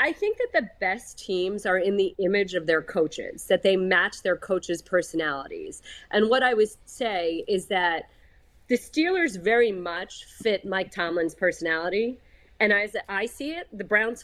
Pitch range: 175-225 Hz